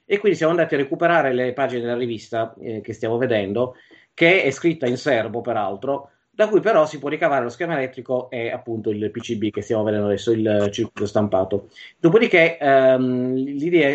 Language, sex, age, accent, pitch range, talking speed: Italian, male, 30-49, native, 115-145 Hz, 185 wpm